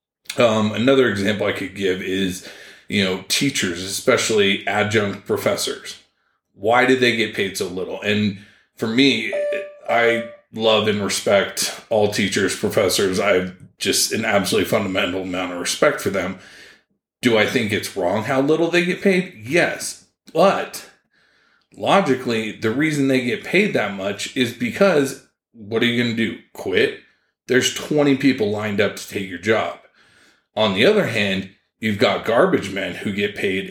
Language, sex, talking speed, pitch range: English, male, 160 wpm, 100-140 Hz